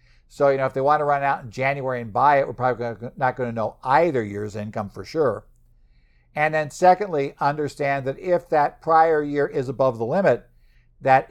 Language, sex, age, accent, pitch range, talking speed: English, male, 60-79, American, 115-145 Hz, 205 wpm